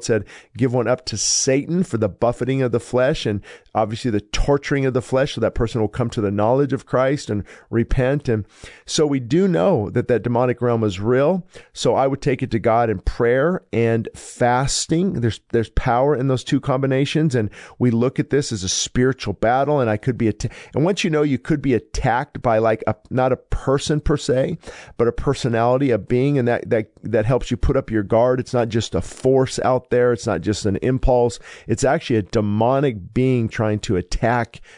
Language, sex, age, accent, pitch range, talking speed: English, male, 50-69, American, 110-130 Hz, 220 wpm